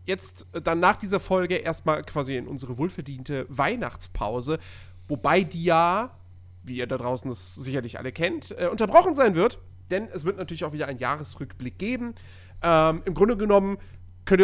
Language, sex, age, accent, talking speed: German, male, 40-59, German, 165 wpm